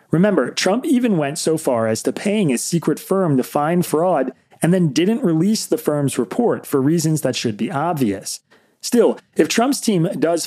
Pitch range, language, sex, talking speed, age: 115-170 Hz, English, male, 190 wpm, 30-49